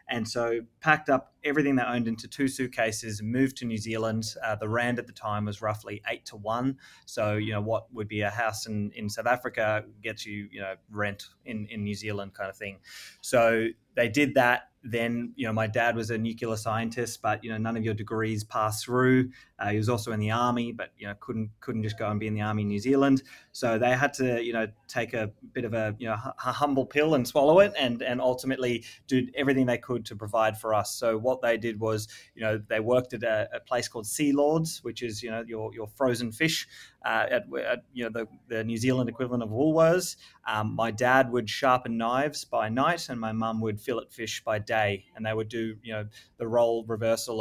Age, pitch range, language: 20-39, 110-125 Hz, English